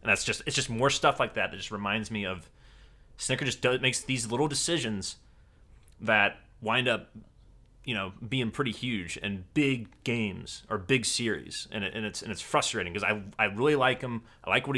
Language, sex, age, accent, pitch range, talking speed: English, male, 30-49, American, 105-135 Hz, 205 wpm